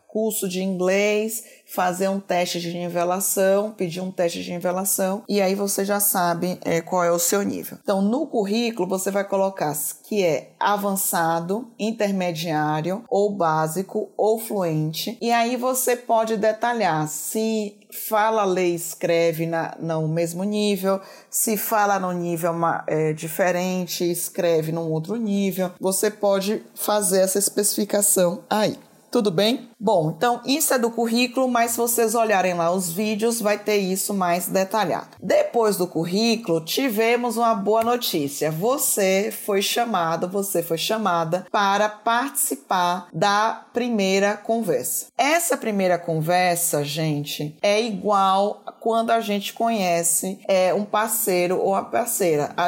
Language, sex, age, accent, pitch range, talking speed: Portuguese, female, 20-39, Brazilian, 175-220 Hz, 140 wpm